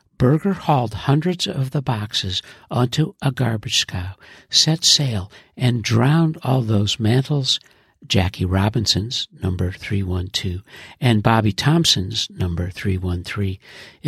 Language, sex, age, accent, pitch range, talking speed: English, male, 60-79, American, 100-140 Hz, 110 wpm